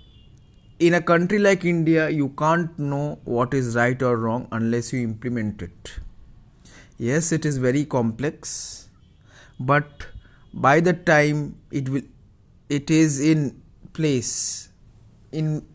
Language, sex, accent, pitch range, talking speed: English, male, Indian, 110-145 Hz, 125 wpm